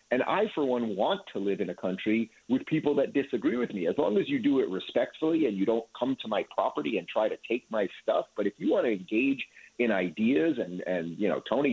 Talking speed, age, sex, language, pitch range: 250 wpm, 40-59, male, English, 115-140 Hz